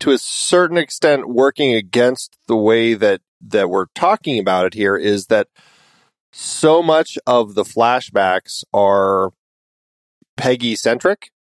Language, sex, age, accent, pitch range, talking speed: English, male, 40-59, American, 110-140 Hz, 125 wpm